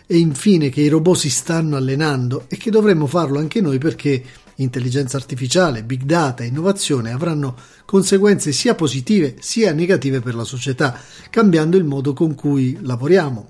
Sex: male